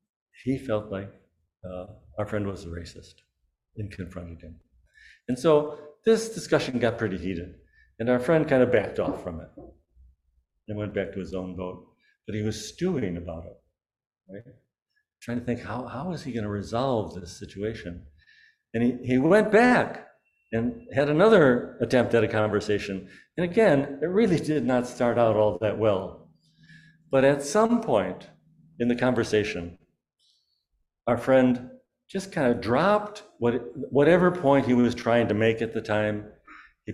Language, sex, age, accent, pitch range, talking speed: English, male, 60-79, American, 95-145 Hz, 165 wpm